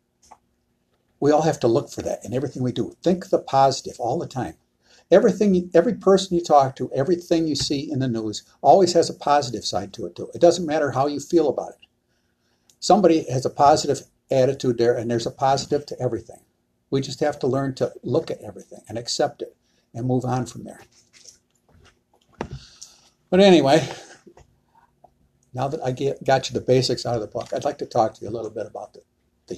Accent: American